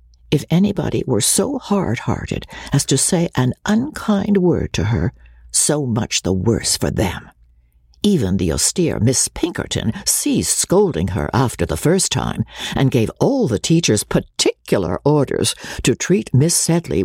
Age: 60-79